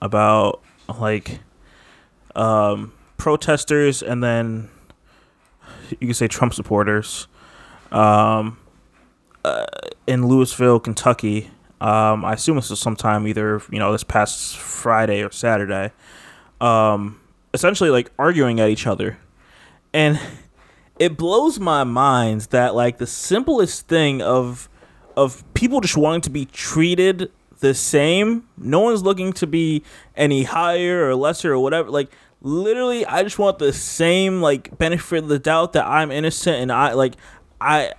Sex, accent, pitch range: male, American, 110-155 Hz